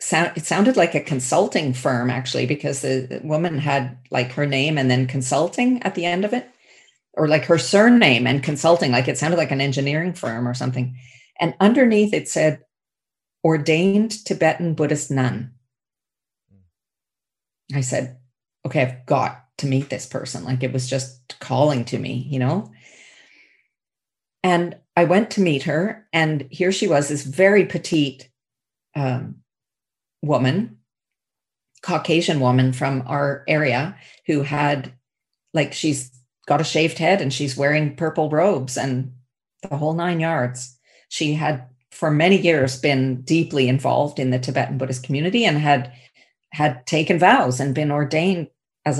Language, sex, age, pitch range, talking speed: English, female, 40-59, 130-165 Hz, 150 wpm